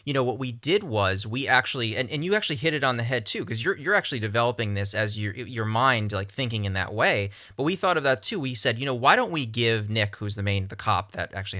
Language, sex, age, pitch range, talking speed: English, male, 20-39, 105-130 Hz, 285 wpm